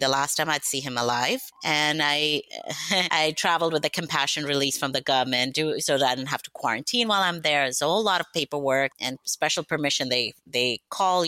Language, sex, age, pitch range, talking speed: English, female, 30-49, 135-165 Hz, 220 wpm